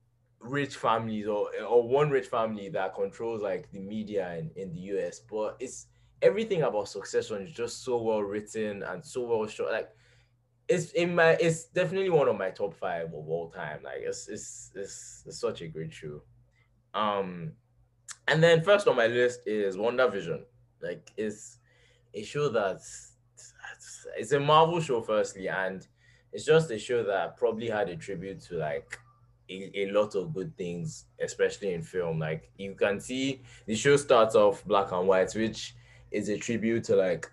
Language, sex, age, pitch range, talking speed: English, male, 20-39, 110-170 Hz, 180 wpm